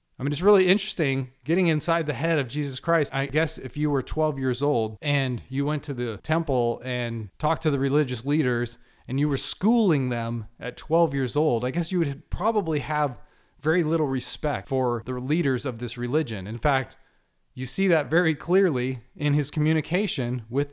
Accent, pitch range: American, 130-165 Hz